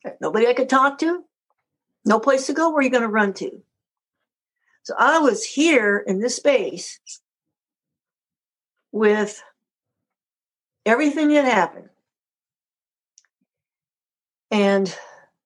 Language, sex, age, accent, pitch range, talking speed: English, female, 60-79, American, 210-290 Hz, 110 wpm